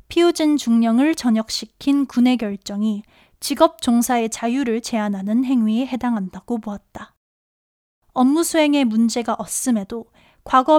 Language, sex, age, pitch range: Korean, female, 20-39, 220-280 Hz